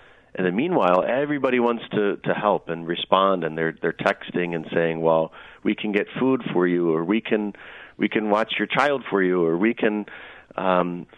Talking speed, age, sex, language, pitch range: 195 wpm, 40-59, male, English, 85-105 Hz